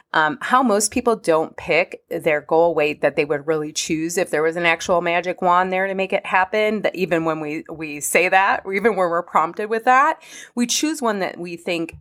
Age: 30-49